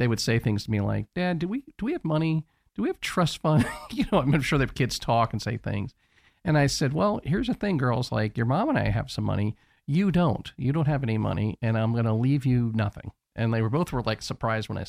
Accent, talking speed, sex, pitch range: American, 275 wpm, male, 110-145 Hz